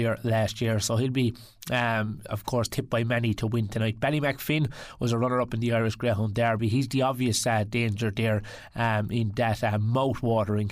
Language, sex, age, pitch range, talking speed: English, male, 20-39, 115-135 Hz, 200 wpm